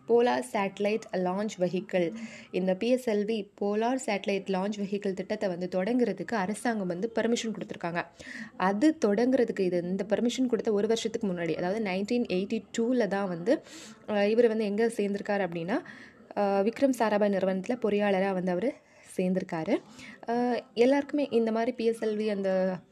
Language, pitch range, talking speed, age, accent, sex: Tamil, 180-230 Hz, 130 wpm, 20-39, native, female